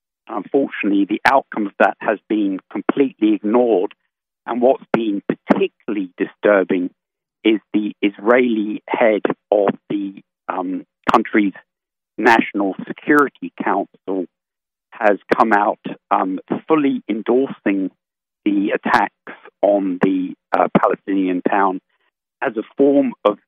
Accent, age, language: British, 50-69, English